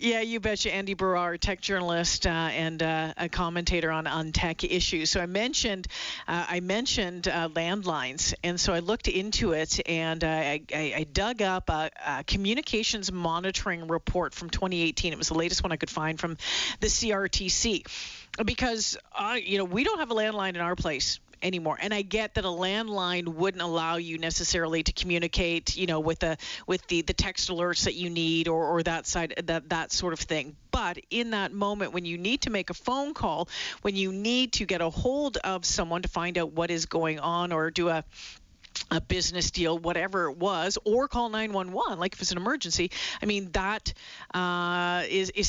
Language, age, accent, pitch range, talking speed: English, 40-59, American, 170-205 Hz, 200 wpm